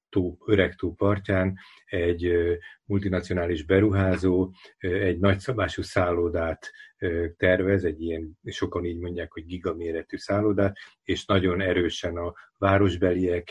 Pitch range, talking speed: 85-100 Hz, 100 wpm